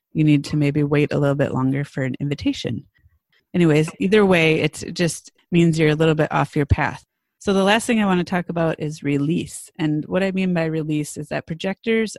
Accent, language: American, English